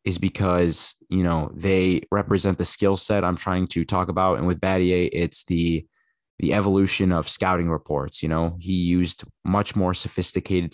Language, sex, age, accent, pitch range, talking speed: English, male, 20-39, American, 85-95 Hz, 175 wpm